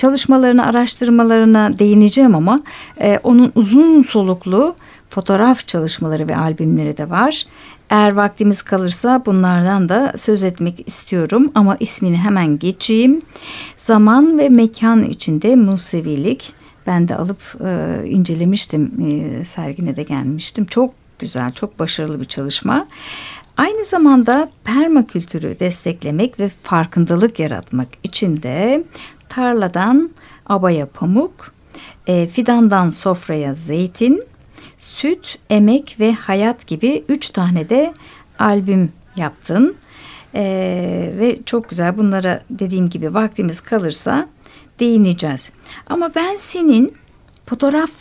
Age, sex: 60-79, female